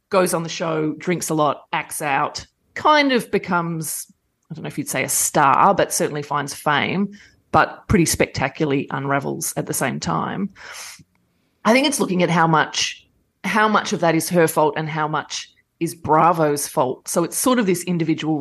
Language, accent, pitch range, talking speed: English, Australian, 155-195 Hz, 190 wpm